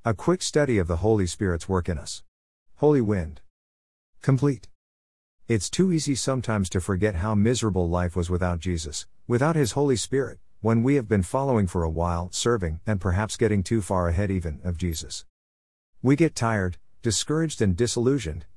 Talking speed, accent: 170 wpm, American